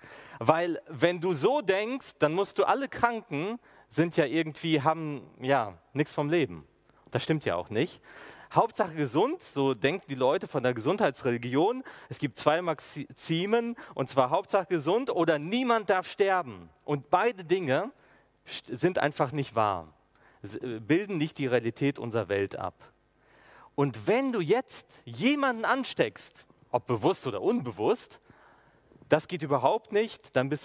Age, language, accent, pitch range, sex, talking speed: 40-59, German, German, 125-180 Hz, male, 145 wpm